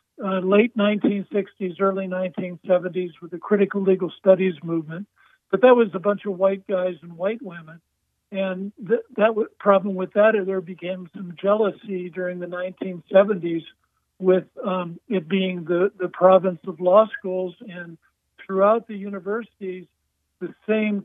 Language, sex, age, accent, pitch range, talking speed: English, male, 60-79, American, 180-205 Hz, 150 wpm